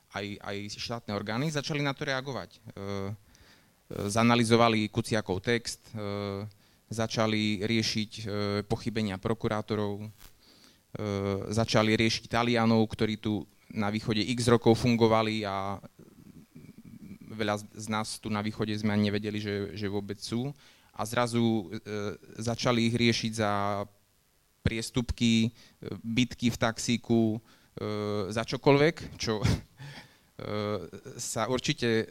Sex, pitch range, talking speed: male, 105-120 Hz, 100 wpm